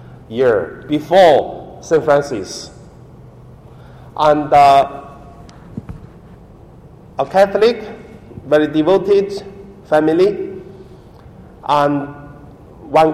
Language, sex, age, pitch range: Chinese, male, 50-69, 125-160 Hz